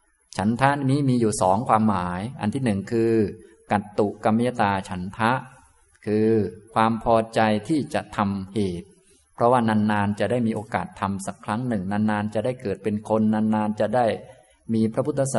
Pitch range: 100-115 Hz